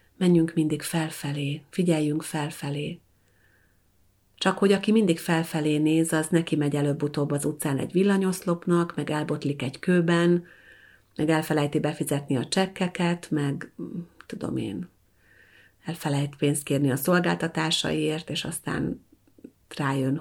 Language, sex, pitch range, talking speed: Hungarian, female, 125-170 Hz, 115 wpm